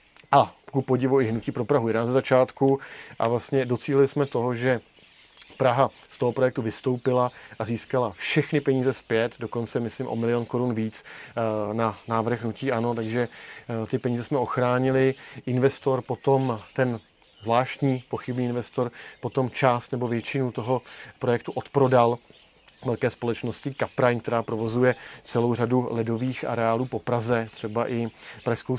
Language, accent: Czech, native